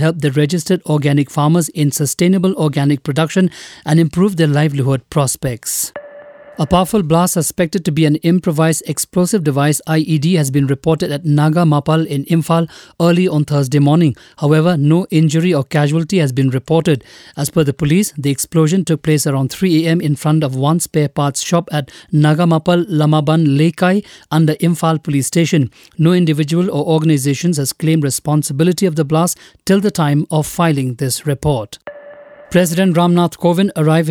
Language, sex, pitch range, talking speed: English, male, 145-170 Hz, 160 wpm